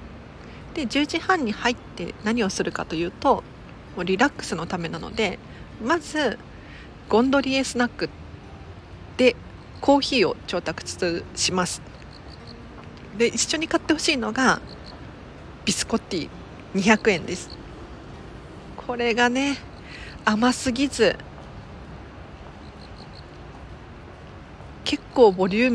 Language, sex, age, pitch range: Japanese, female, 40-59, 175-245 Hz